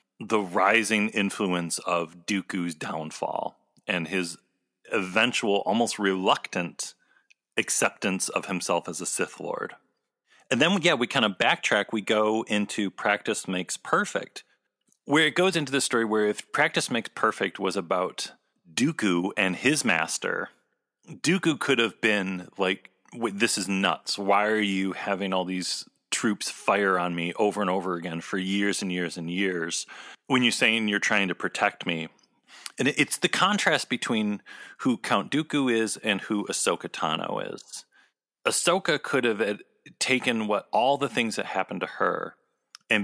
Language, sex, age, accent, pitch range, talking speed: English, male, 40-59, American, 90-115 Hz, 155 wpm